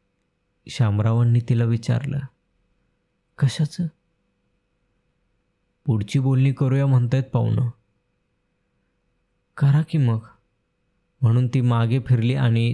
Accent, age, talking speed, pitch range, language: native, 20-39, 70 wpm, 115-135 Hz, Marathi